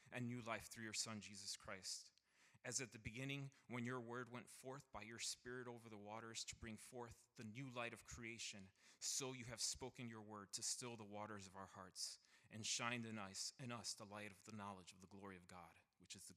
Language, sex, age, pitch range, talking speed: English, male, 30-49, 100-115 Hz, 230 wpm